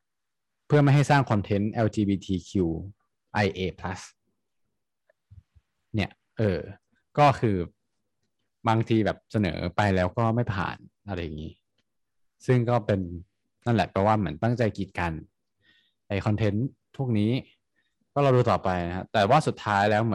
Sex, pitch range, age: male, 95-120 Hz, 20-39